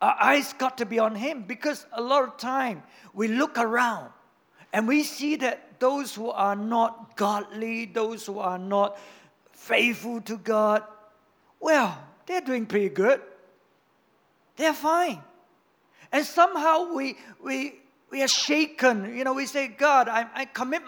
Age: 50-69